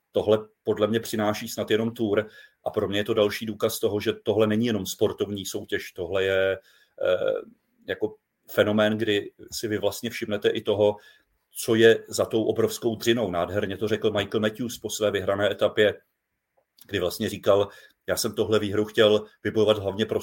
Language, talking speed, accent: Czech, 175 wpm, native